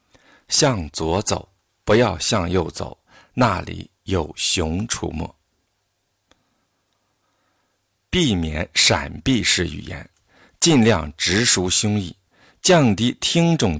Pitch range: 85-115 Hz